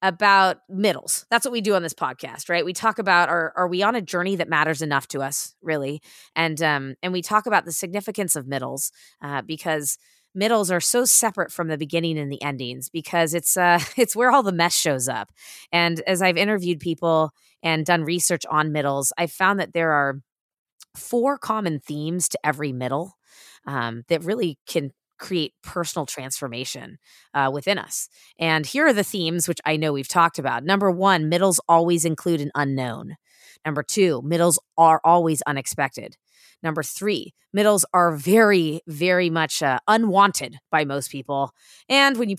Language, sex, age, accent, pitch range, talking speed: English, female, 20-39, American, 145-190 Hz, 180 wpm